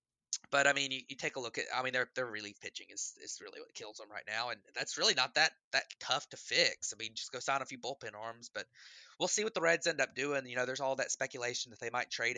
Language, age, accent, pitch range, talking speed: English, 20-39, American, 105-125 Hz, 285 wpm